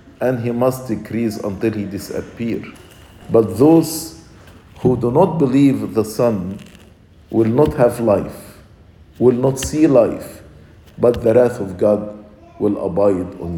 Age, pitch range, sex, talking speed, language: 50-69, 100-135 Hz, male, 135 wpm, English